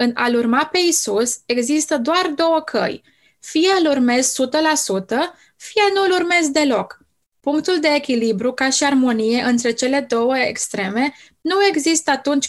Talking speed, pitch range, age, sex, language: 150 wpm, 235-285 Hz, 20-39, female, Romanian